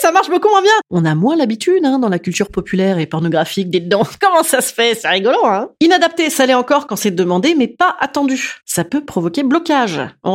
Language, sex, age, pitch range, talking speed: French, female, 30-49, 185-285 Hz, 230 wpm